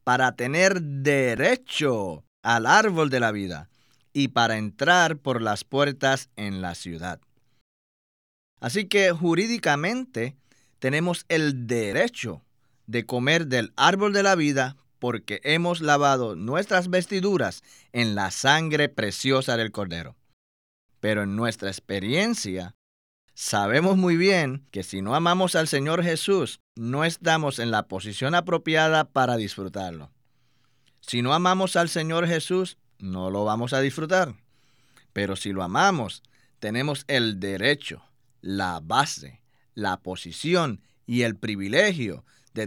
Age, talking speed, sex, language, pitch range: 30-49, 125 wpm, male, Spanish, 105-160 Hz